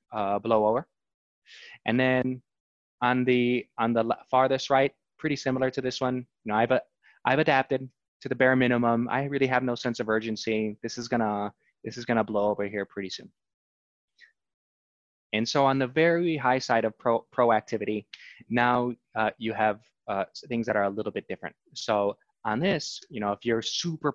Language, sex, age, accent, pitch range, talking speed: English, male, 20-39, American, 110-135 Hz, 185 wpm